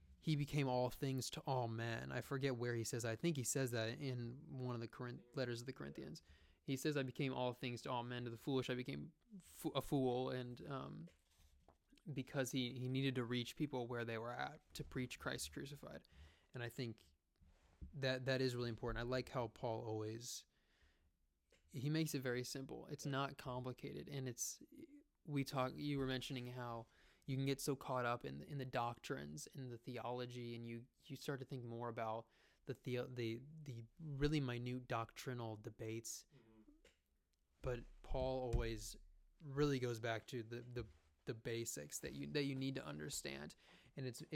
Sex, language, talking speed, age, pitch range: male, English, 185 wpm, 20-39, 115-135 Hz